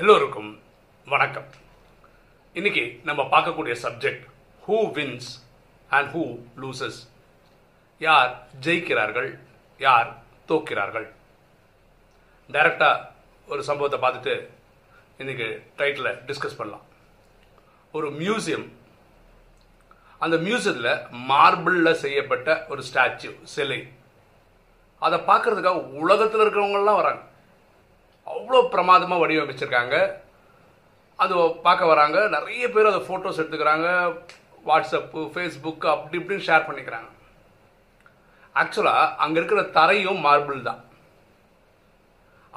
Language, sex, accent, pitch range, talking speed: Tamil, male, native, 145-200 Hz, 55 wpm